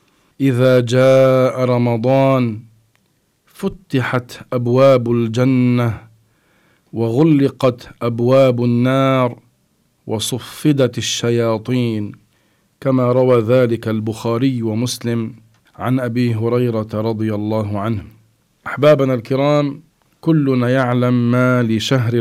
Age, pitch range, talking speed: 40-59, 115-130 Hz, 75 wpm